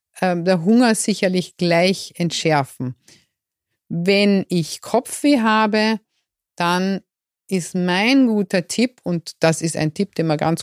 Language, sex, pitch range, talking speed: German, female, 165-210 Hz, 125 wpm